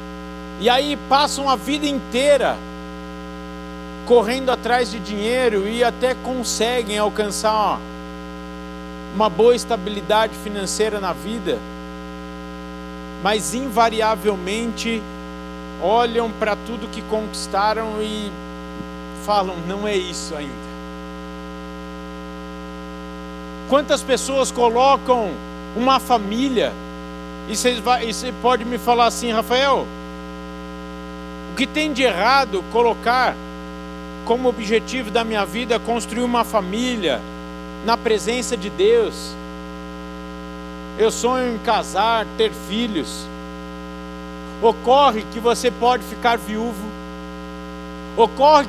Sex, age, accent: male, 50-69, Brazilian